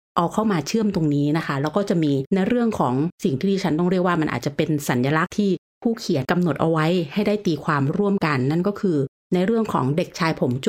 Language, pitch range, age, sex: Thai, 150-190 Hz, 30-49, female